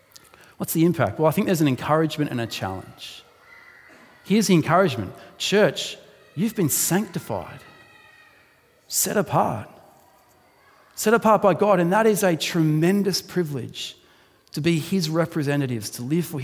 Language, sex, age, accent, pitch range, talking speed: English, male, 40-59, Australian, 125-160 Hz, 140 wpm